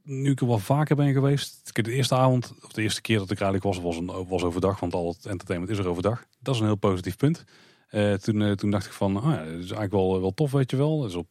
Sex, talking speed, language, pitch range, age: male, 295 wpm, Dutch, 95-130 Hz, 30-49